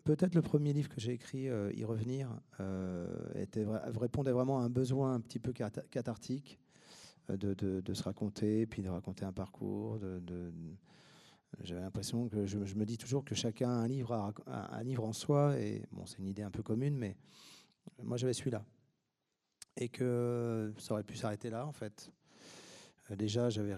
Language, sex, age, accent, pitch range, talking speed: French, male, 40-59, French, 100-125 Hz, 200 wpm